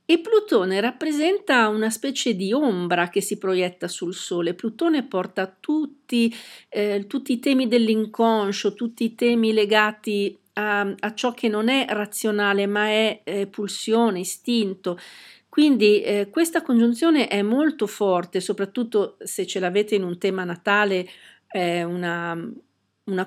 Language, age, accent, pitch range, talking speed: Italian, 50-69, native, 195-240 Hz, 135 wpm